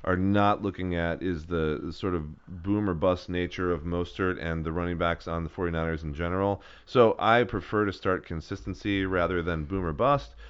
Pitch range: 80-100 Hz